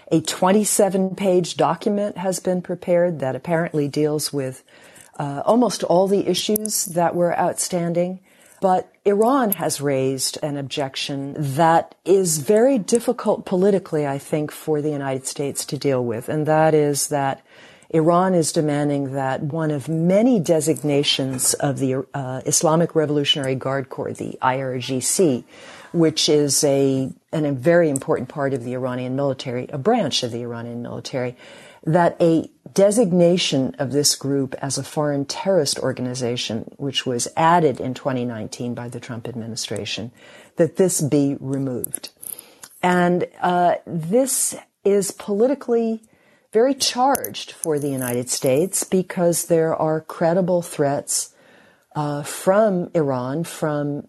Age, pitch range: 50-69, 135-180 Hz